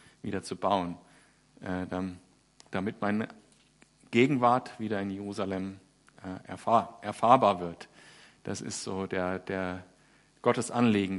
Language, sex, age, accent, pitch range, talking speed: German, male, 50-69, German, 100-135 Hz, 115 wpm